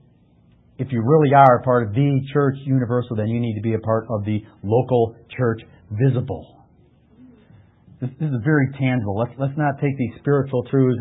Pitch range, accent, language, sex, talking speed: 110-140 Hz, American, English, male, 185 wpm